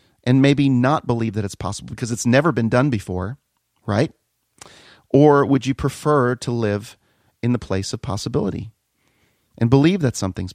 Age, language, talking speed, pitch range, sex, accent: 40-59, English, 165 wpm, 110-145 Hz, male, American